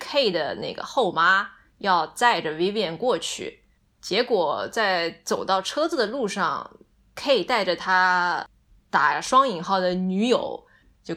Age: 20-39